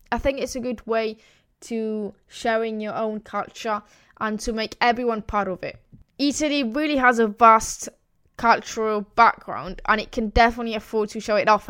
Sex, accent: female, British